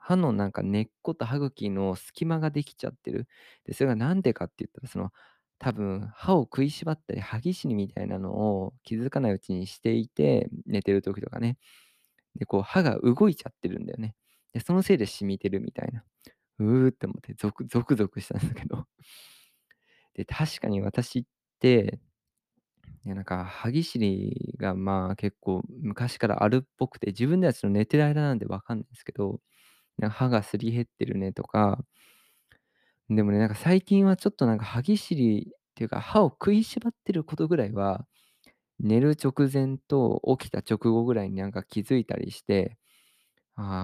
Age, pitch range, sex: 20-39, 100-145 Hz, male